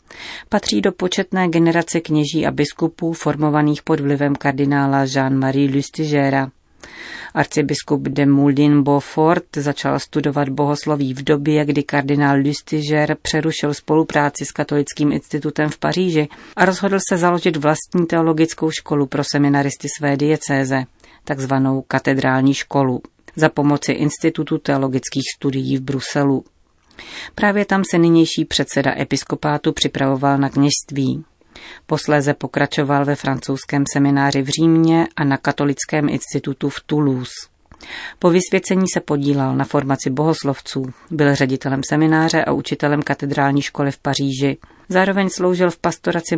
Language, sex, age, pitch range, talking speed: Czech, female, 40-59, 140-160 Hz, 125 wpm